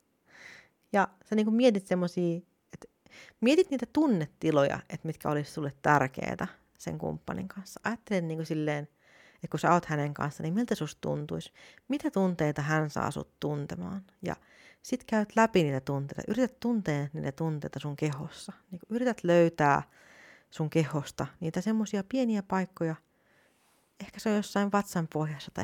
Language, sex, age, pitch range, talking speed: Finnish, female, 30-49, 155-200 Hz, 150 wpm